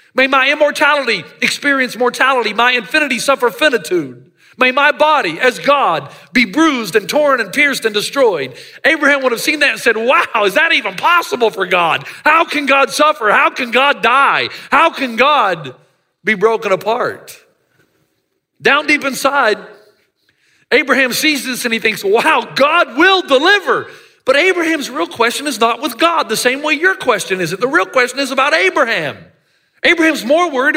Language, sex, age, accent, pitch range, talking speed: English, male, 40-59, American, 220-310 Hz, 170 wpm